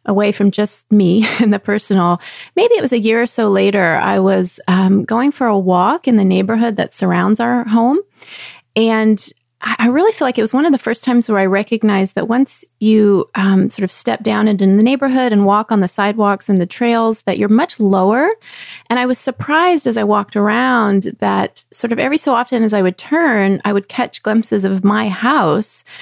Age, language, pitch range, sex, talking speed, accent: 30-49, English, 200-275 Hz, female, 210 wpm, American